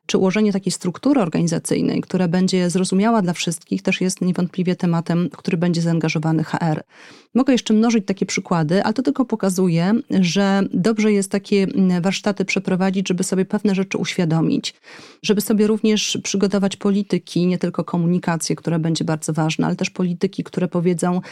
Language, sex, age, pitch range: Polish, female, 30-49, 175-200 Hz